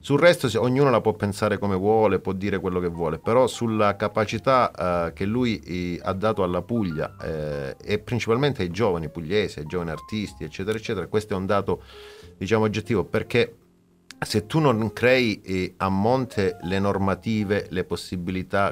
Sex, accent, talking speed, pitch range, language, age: male, native, 165 wpm, 90-110 Hz, Italian, 40-59